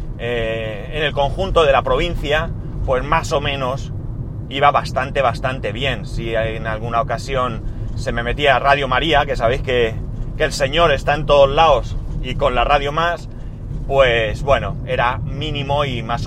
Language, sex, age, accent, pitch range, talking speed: Spanish, male, 30-49, Spanish, 115-140 Hz, 165 wpm